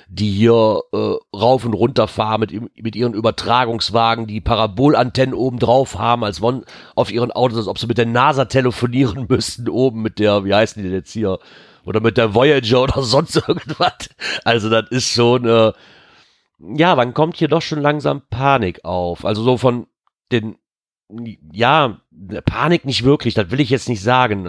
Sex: male